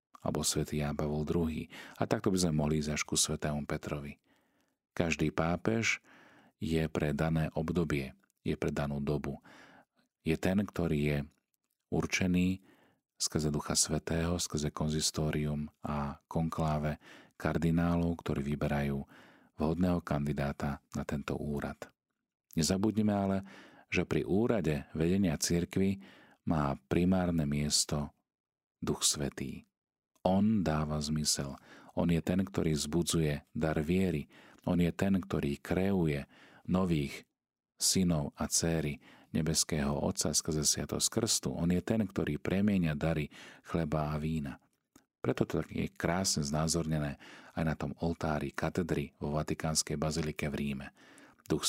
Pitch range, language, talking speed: 75-85 Hz, Slovak, 125 wpm